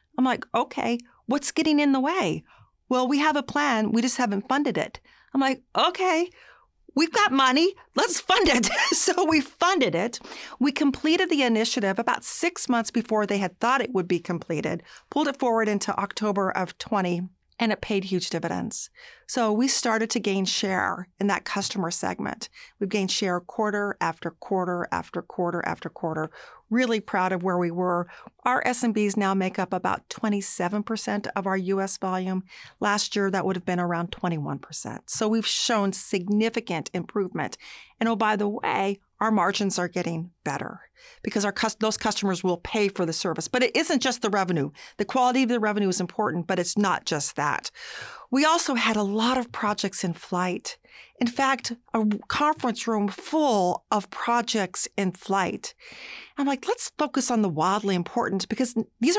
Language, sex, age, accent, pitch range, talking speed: English, female, 40-59, American, 190-255 Hz, 175 wpm